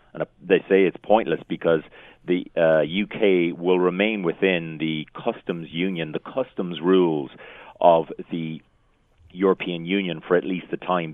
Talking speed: 145 wpm